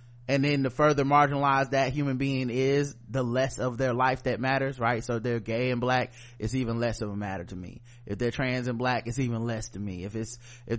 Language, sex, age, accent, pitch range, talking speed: English, male, 20-39, American, 115-140 Hz, 245 wpm